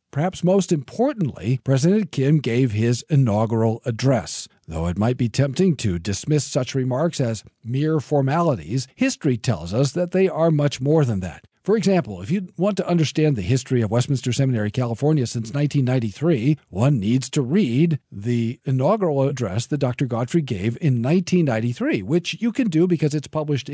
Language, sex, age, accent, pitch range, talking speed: English, male, 50-69, American, 115-155 Hz, 165 wpm